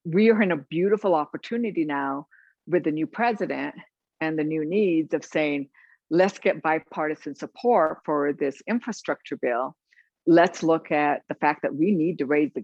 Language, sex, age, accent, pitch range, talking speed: English, female, 60-79, American, 140-170 Hz, 170 wpm